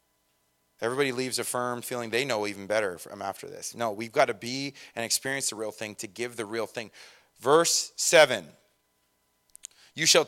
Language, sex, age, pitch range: English, male, 30-49, 115-175 Hz